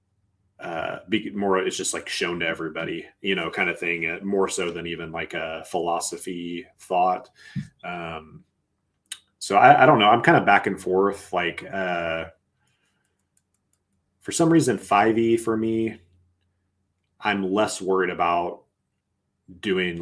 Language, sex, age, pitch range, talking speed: English, male, 30-49, 85-100 Hz, 140 wpm